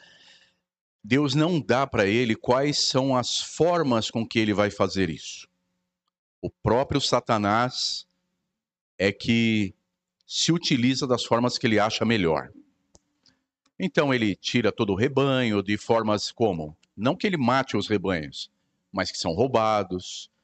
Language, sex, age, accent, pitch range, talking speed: Portuguese, male, 50-69, Brazilian, 100-140 Hz, 140 wpm